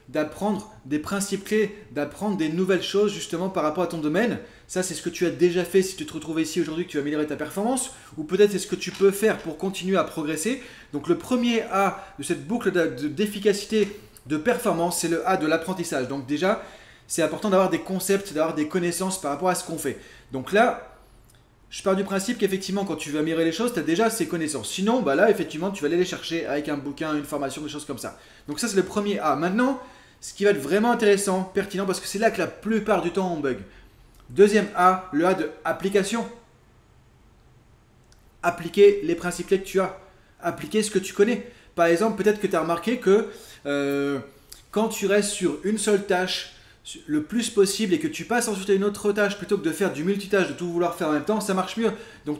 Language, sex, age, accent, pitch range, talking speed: French, male, 20-39, French, 160-205 Hz, 230 wpm